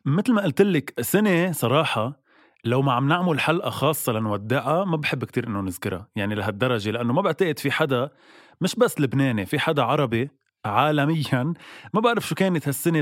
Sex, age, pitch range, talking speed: male, 20-39, 115-145 Hz, 170 wpm